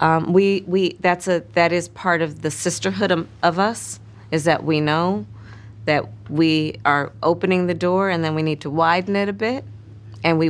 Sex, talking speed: female, 200 wpm